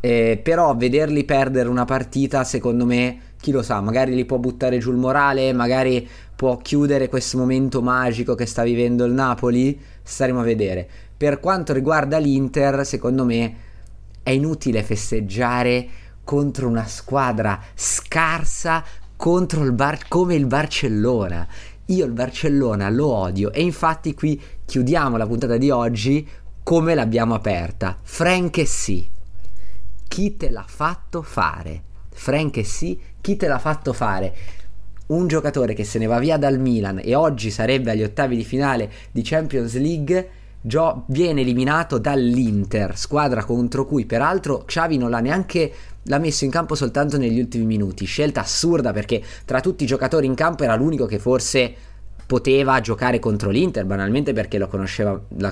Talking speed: 155 wpm